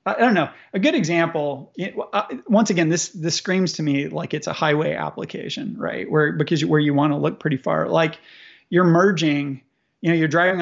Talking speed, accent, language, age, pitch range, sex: 205 wpm, American, English, 30-49, 160-190 Hz, male